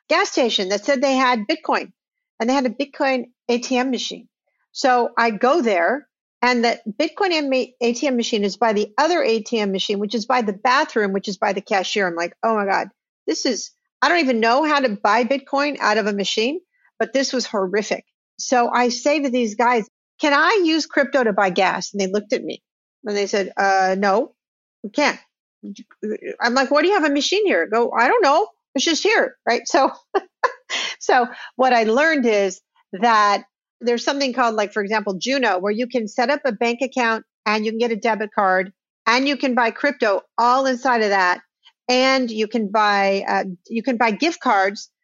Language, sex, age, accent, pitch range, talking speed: English, female, 50-69, American, 210-270 Hz, 205 wpm